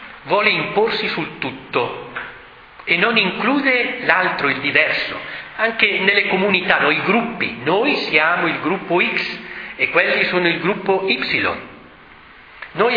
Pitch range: 185-235 Hz